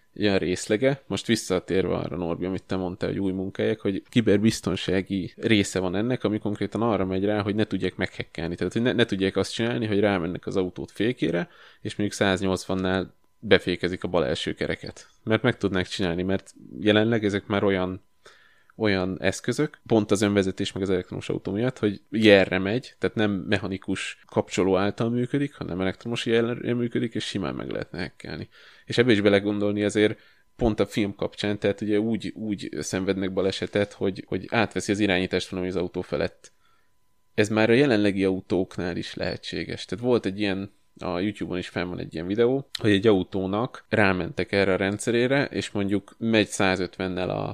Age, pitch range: 20-39, 95-110 Hz